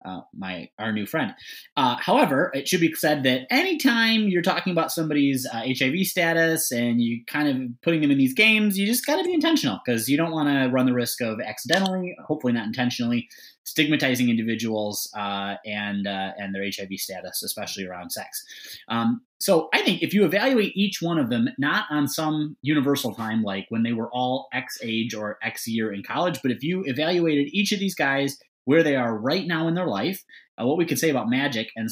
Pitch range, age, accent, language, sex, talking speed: 110-165 Hz, 20-39, American, English, male, 210 wpm